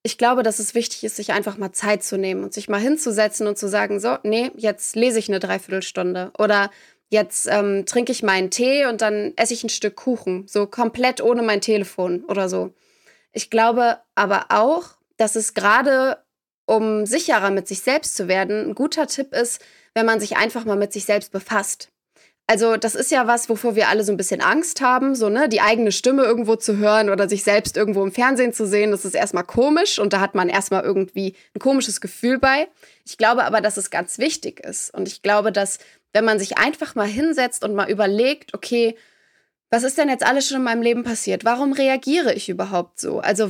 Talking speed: 215 wpm